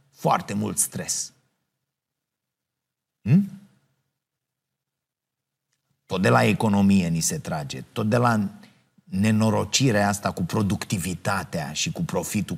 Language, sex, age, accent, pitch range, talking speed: Romanian, male, 30-49, native, 110-145 Hz, 95 wpm